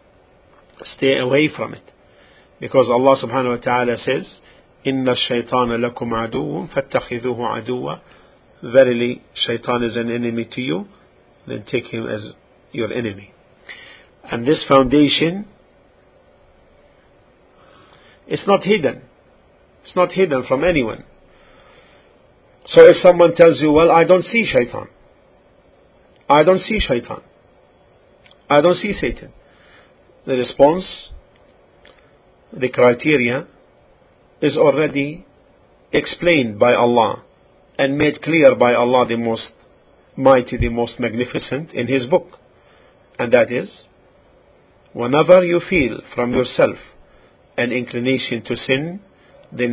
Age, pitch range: 50-69, 120-155 Hz